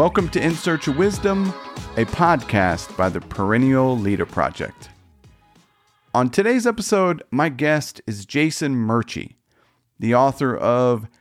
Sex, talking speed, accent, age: male, 130 wpm, American, 40-59